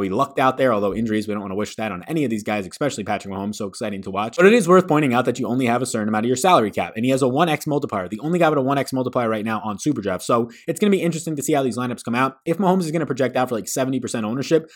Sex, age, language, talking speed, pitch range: male, 20-39, English, 340 wpm, 115-145 Hz